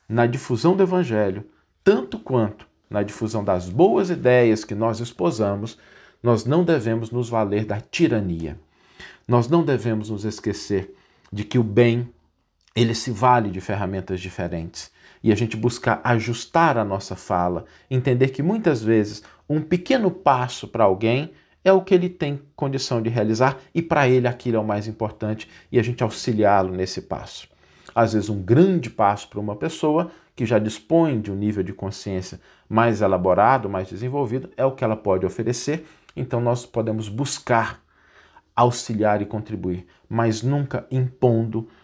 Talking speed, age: 160 wpm, 50-69